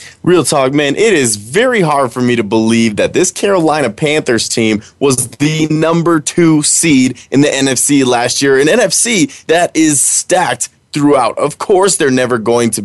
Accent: American